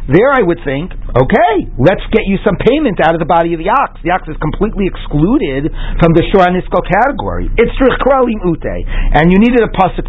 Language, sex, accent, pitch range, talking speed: English, male, American, 140-205 Hz, 200 wpm